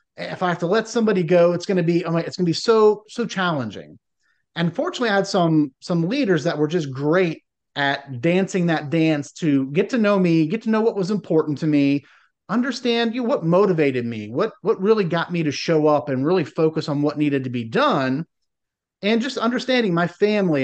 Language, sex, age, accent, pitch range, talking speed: English, male, 30-49, American, 150-205 Hz, 215 wpm